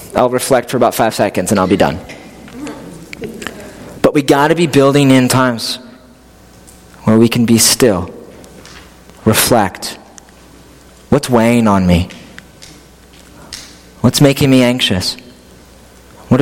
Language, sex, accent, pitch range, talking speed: English, male, American, 105-140 Hz, 115 wpm